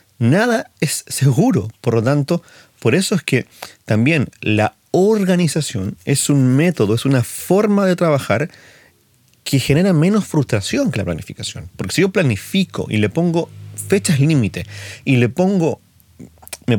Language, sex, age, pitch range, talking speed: Spanish, male, 40-59, 105-150 Hz, 145 wpm